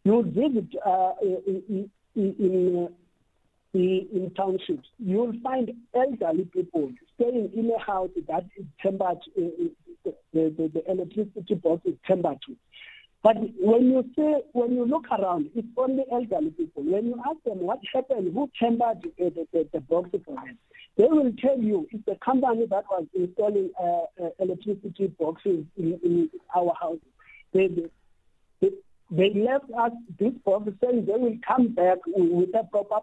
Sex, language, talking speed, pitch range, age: male, English, 160 wpm, 185-250 Hz, 50-69